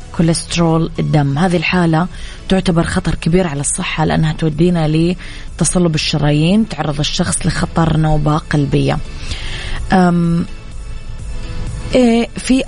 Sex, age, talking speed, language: female, 20-39, 95 wpm, English